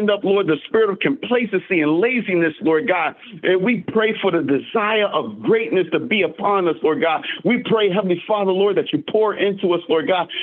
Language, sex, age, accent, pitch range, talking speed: English, male, 50-69, American, 175-225 Hz, 205 wpm